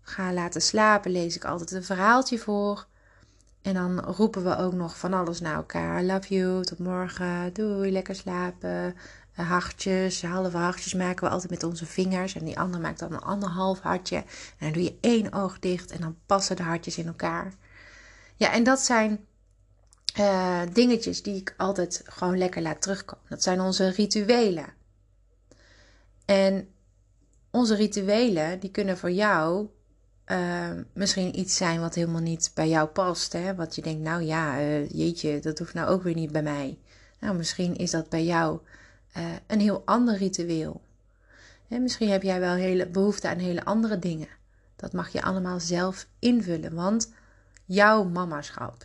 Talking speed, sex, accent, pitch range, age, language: 165 wpm, female, Dutch, 160-195 Hz, 30-49, Dutch